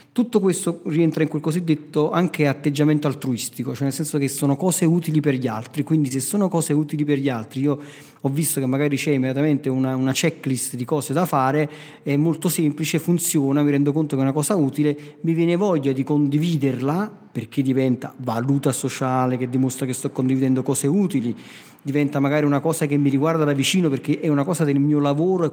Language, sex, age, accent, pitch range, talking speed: Italian, male, 40-59, native, 135-160 Hz, 200 wpm